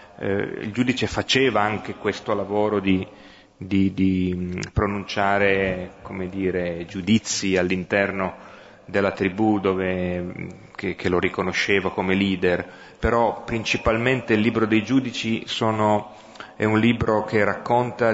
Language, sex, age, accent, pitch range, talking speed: Italian, male, 30-49, native, 95-110 Hz, 100 wpm